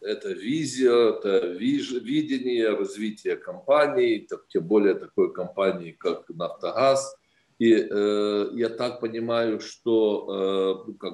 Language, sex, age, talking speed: Ukrainian, male, 50-69, 100 wpm